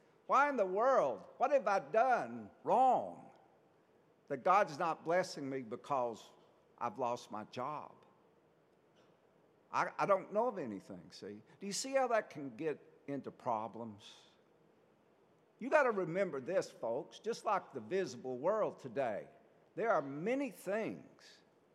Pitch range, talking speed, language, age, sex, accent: 140-200 Hz, 140 wpm, English, 60-79, male, American